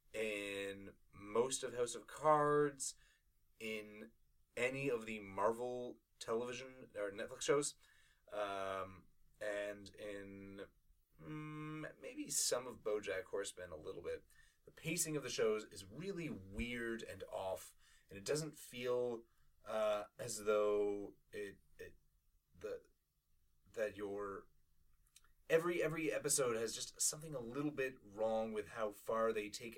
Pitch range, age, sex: 100-145 Hz, 30-49, male